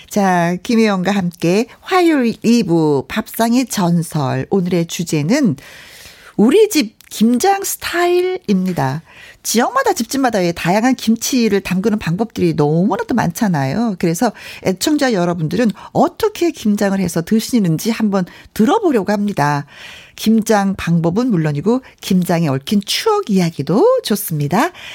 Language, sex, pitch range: Korean, female, 170-240 Hz